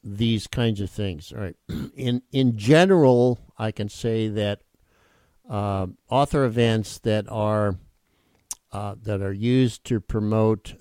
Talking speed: 135 wpm